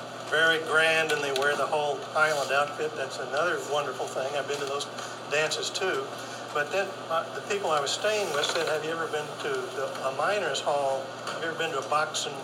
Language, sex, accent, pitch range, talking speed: English, male, American, 140-165 Hz, 220 wpm